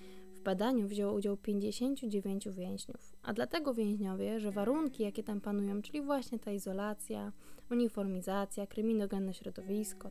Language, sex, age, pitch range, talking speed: Polish, female, 20-39, 195-220 Hz, 125 wpm